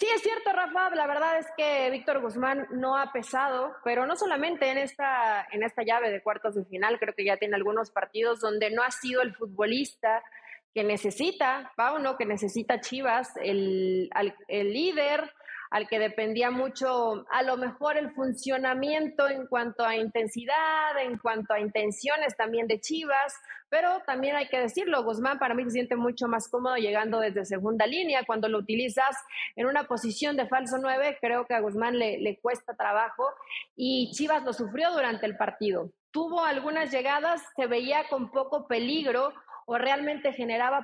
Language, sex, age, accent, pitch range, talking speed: Spanish, female, 30-49, Mexican, 230-285 Hz, 175 wpm